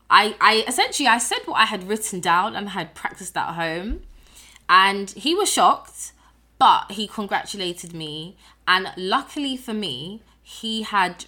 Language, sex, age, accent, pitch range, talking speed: English, female, 20-39, British, 155-190 Hz, 155 wpm